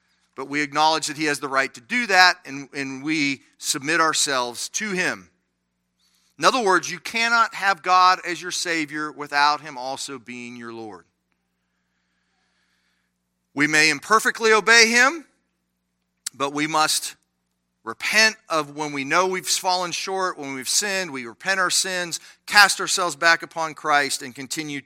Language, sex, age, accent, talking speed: English, male, 40-59, American, 155 wpm